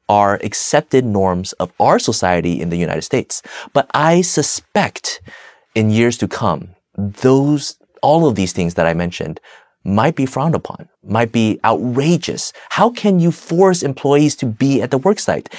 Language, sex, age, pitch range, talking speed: English, male, 30-49, 95-140 Hz, 165 wpm